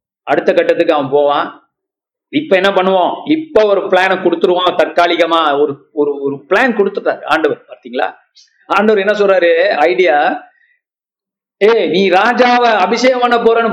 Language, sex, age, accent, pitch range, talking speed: Tamil, male, 50-69, native, 190-250 Hz, 120 wpm